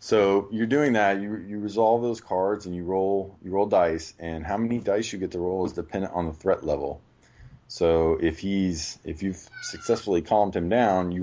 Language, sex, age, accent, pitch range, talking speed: English, male, 20-39, American, 80-100 Hz, 210 wpm